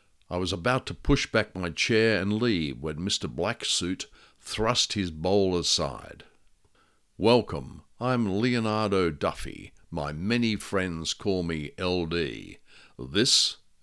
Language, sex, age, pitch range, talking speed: English, male, 60-79, 90-110 Hz, 125 wpm